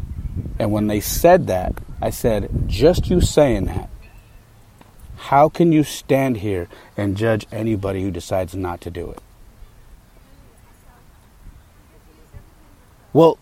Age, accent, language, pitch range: 30-49, American, English, 90-115 Hz